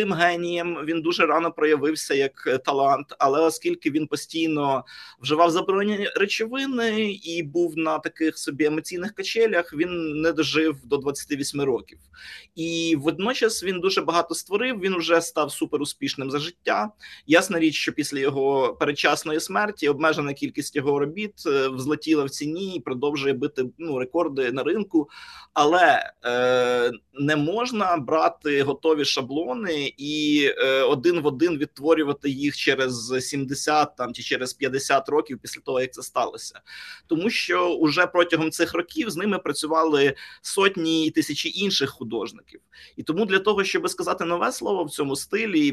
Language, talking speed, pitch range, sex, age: Ukrainian, 145 wpm, 145-180 Hz, male, 30-49